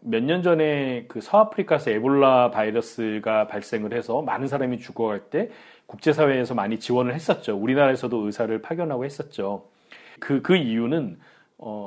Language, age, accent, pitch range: Korean, 40-59, native, 115-165 Hz